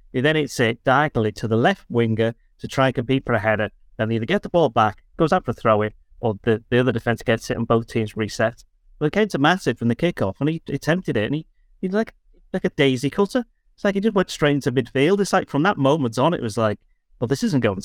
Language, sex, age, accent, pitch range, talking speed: English, male, 30-49, British, 115-145 Hz, 270 wpm